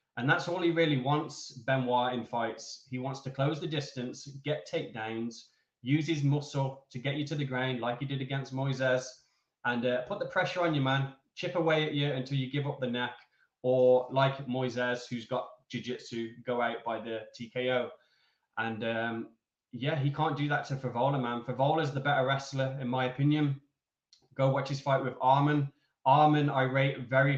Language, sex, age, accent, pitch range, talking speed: English, male, 10-29, British, 125-145 Hz, 195 wpm